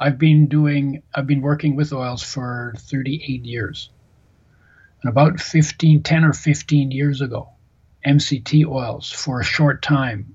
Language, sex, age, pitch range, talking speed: English, male, 60-79, 120-150 Hz, 145 wpm